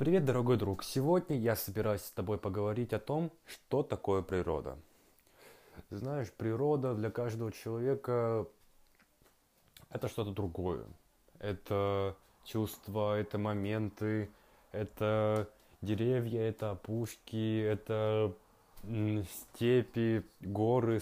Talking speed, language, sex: 95 wpm, Russian, male